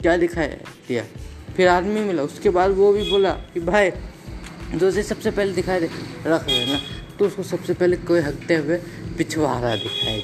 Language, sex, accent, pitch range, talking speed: Hindi, female, native, 115-170 Hz, 190 wpm